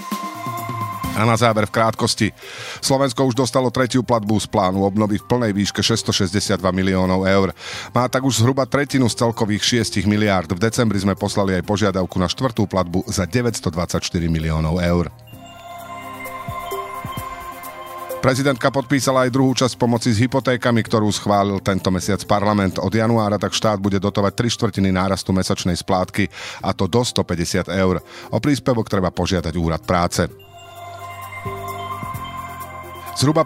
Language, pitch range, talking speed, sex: Slovak, 95-130 Hz, 140 wpm, male